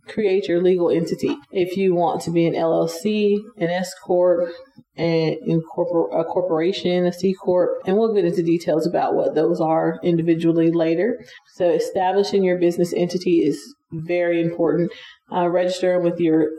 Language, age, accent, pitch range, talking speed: English, 30-49, American, 165-185 Hz, 155 wpm